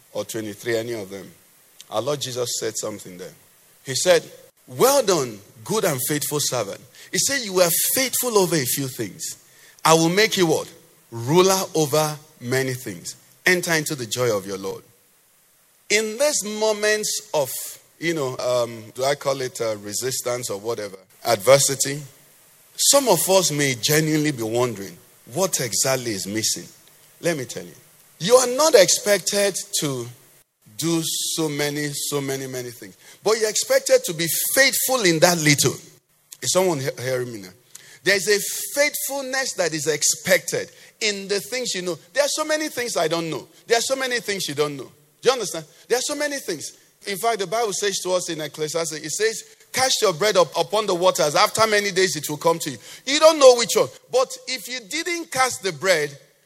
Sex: male